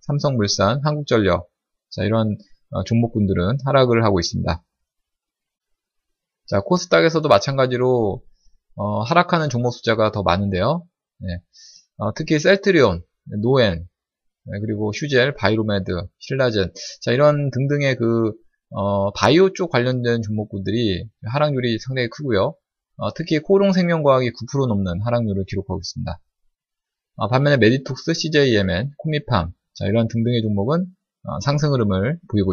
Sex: male